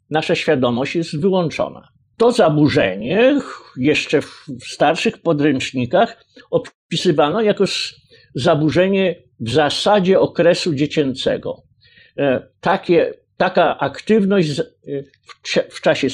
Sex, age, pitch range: male, 50-69, 140-185 Hz